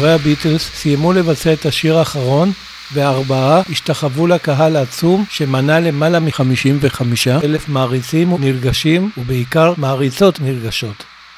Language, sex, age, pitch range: Hebrew, male, 60-79, 135-160 Hz